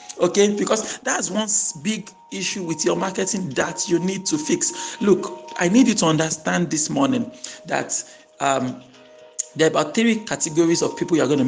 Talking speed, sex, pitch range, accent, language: 175 wpm, male, 135-205 Hz, Nigerian, English